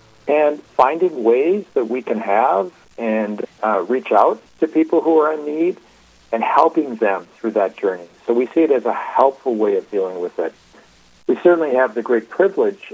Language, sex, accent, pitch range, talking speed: English, male, American, 105-170 Hz, 190 wpm